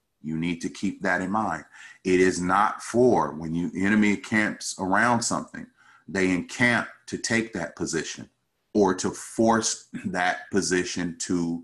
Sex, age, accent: male, 30-49, American